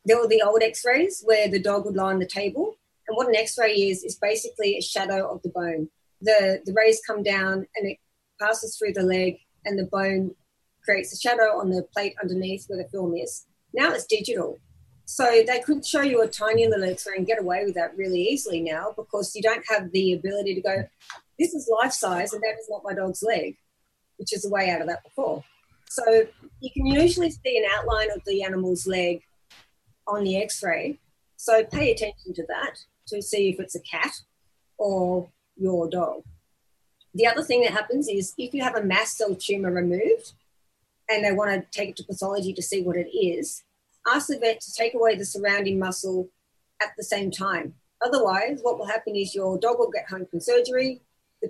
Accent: Australian